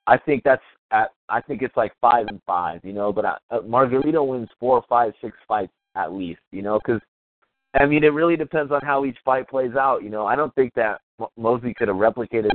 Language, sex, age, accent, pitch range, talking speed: English, male, 30-49, American, 105-140 Hz, 225 wpm